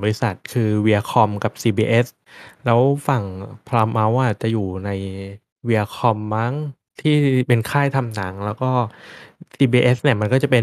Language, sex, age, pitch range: Thai, male, 20-39, 105-125 Hz